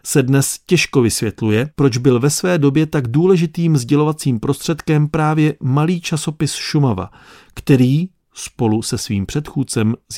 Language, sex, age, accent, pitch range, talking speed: Czech, male, 40-59, native, 120-165 Hz, 135 wpm